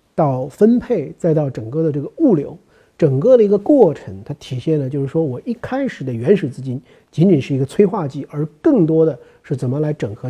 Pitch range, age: 130-175 Hz, 50-69